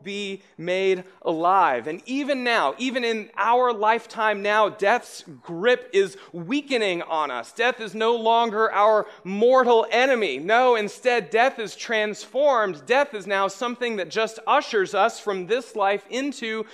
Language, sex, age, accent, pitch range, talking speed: English, male, 30-49, American, 175-240 Hz, 145 wpm